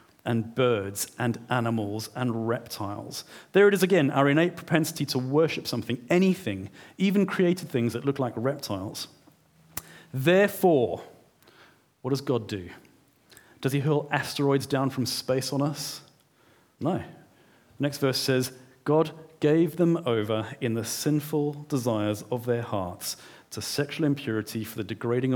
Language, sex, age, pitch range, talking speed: English, male, 40-59, 110-145 Hz, 140 wpm